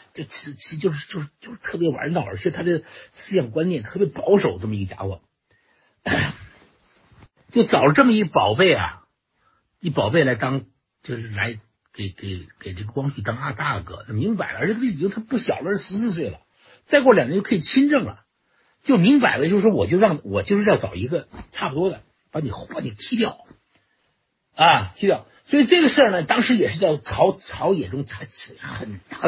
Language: Chinese